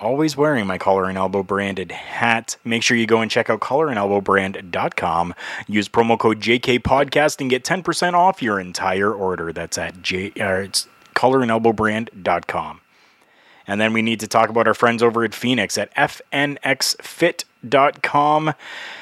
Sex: male